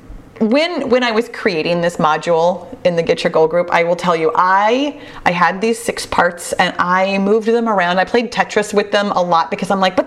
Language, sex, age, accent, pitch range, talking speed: English, female, 30-49, American, 175-255 Hz, 230 wpm